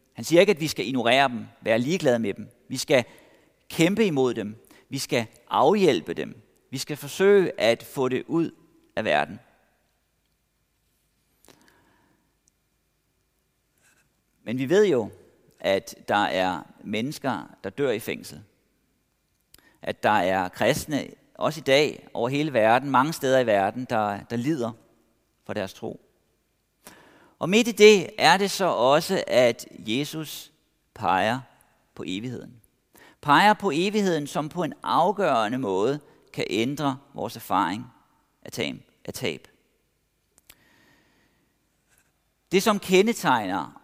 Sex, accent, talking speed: male, native, 125 wpm